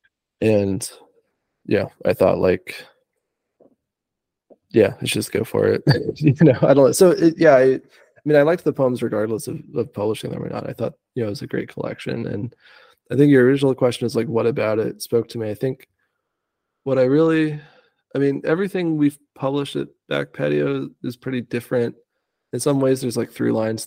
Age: 20-39